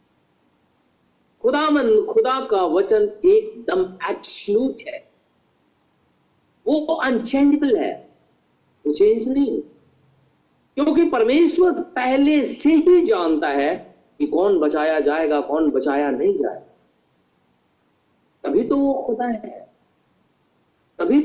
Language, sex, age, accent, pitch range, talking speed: Hindi, male, 50-69, native, 265-420 Hz, 95 wpm